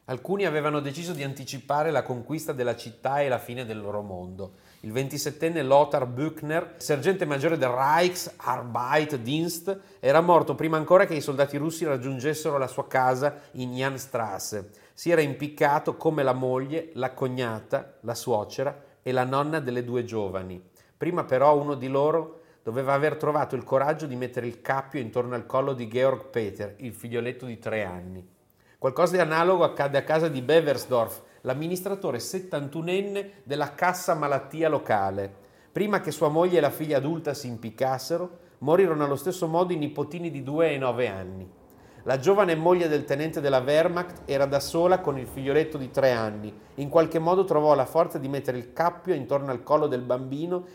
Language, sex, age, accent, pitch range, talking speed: Italian, male, 40-59, native, 125-160 Hz, 170 wpm